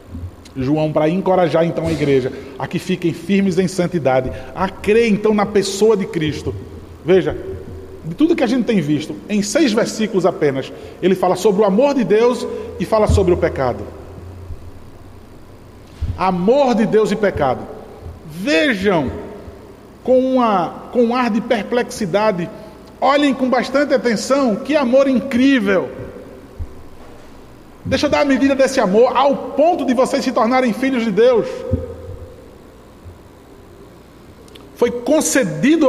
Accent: Brazilian